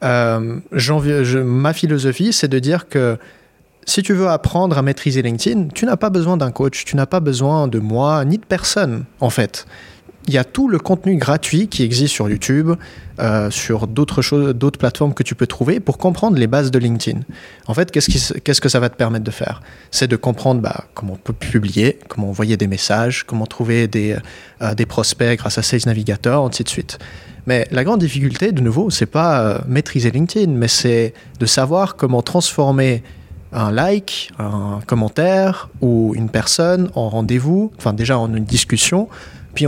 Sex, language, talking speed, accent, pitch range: male, French, 195 wpm, French, 115-150 Hz